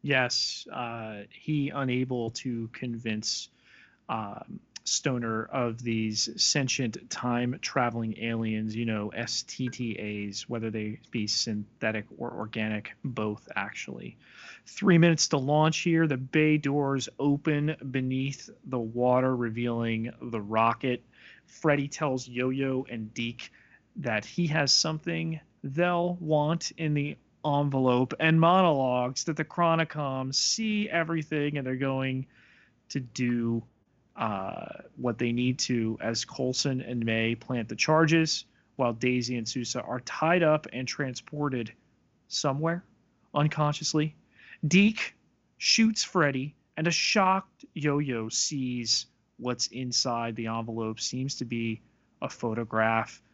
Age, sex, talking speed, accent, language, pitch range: 30-49, male, 120 wpm, American, English, 115-150 Hz